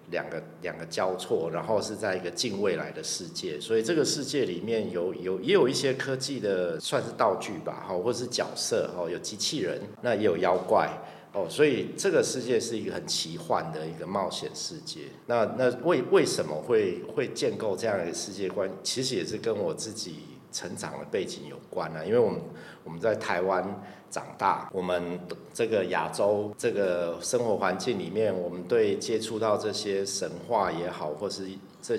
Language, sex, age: Chinese, male, 50-69